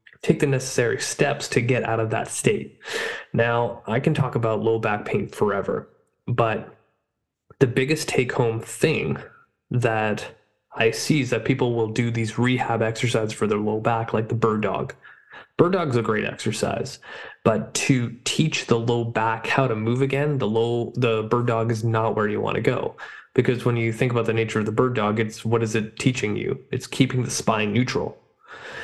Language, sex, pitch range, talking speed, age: English, male, 115-130 Hz, 190 wpm, 20-39